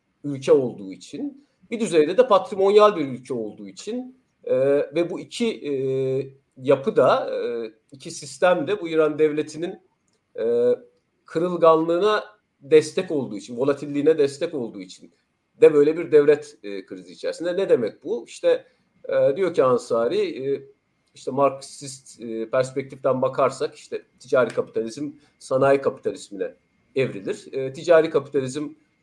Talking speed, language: 130 wpm, Turkish